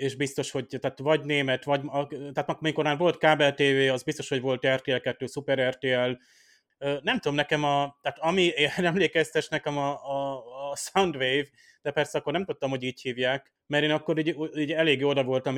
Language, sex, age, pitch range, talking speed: Hungarian, male, 30-49, 130-145 Hz, 190 wpm